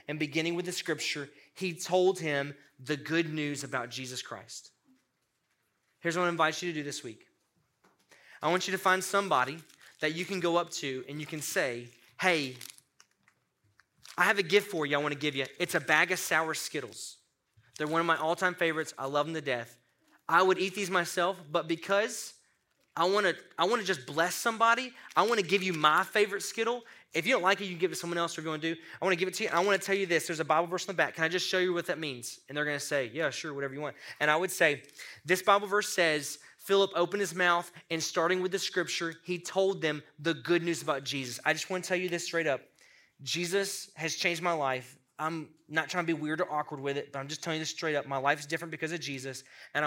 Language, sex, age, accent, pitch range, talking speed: English, male, 20-39, American, 150-185 Hz, 250 wpm